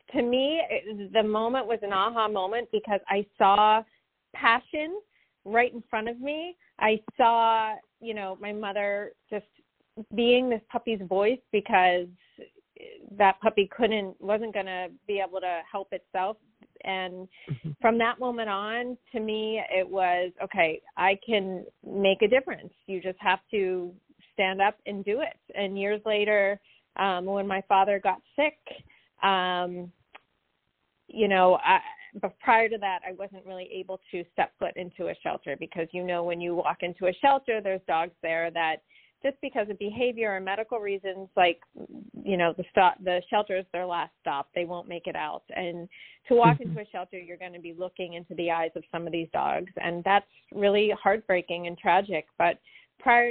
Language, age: English, 30-49